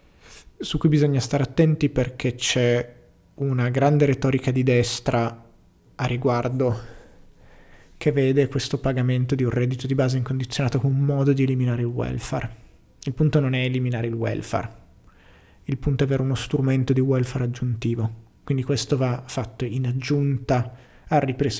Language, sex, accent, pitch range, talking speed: Italian, male, native, 120-140 Hz, 155 wpm